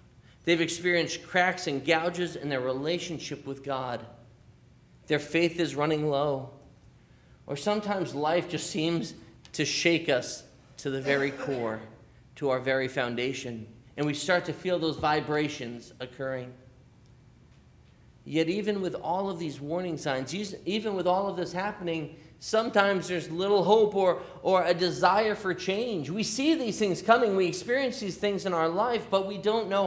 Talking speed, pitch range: 160 wpm, 135-185 Hz